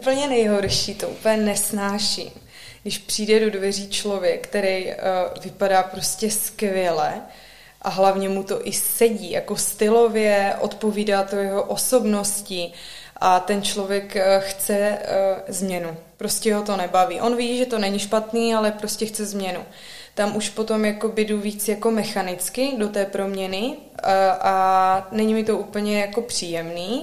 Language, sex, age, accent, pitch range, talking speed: Czech, female, 20-39, native, 195-225 Hz, 140 wpm